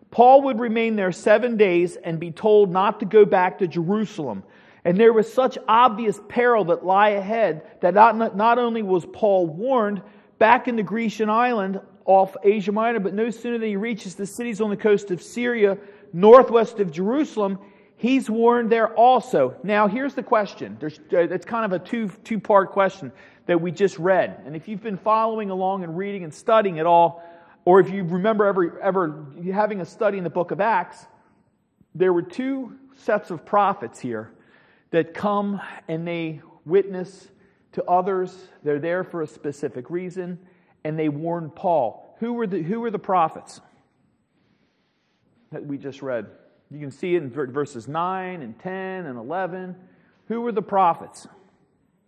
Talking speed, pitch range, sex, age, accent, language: 175 wpm, 175-220 Hz, male, 40-59, American, English